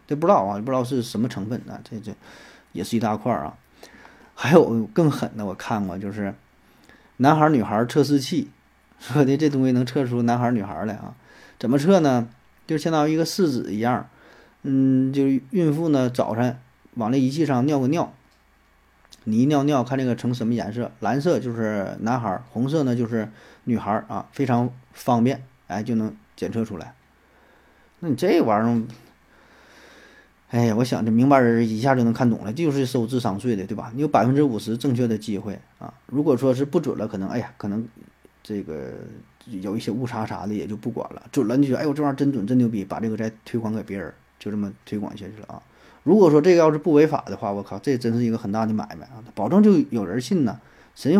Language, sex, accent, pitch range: Chinese, male, native, 110-135 Hz